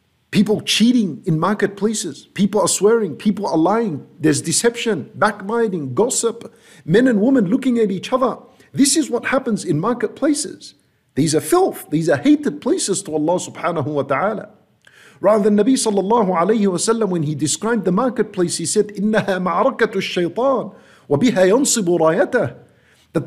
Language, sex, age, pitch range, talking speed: English, male, 50-69, 180-235 Hz, 135 wpm